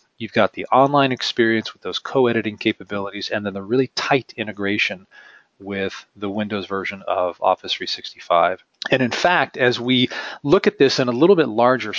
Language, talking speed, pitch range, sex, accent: English, 175 wpm, 105-130 Hz, male, American